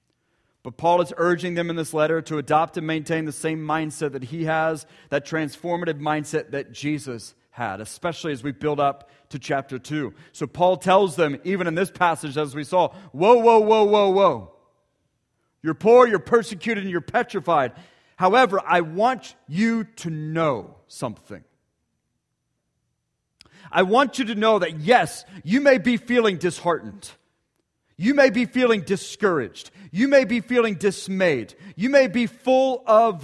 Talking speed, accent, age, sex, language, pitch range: 160 wpm, American, 30-49, male, English, 155-230 Hz